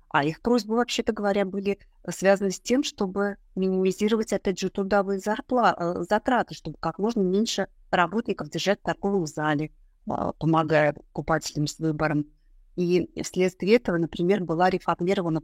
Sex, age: female, 30-49